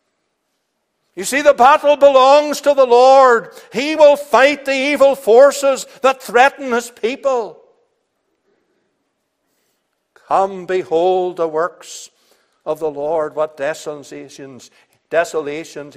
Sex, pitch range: male, 145-220 Hz